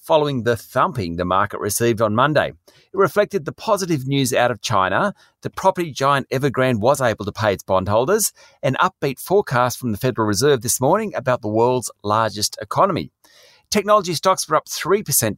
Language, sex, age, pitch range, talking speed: English, male, 40-59, 115-165 Hz, 175 wpm